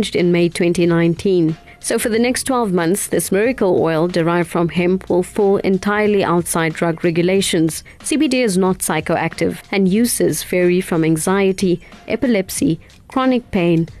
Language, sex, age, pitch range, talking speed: English, female, 30-49, 170-225 Hz, 140 wpm